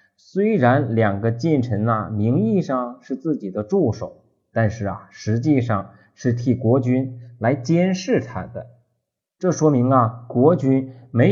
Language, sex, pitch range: Chinese, male, 110-135 Hz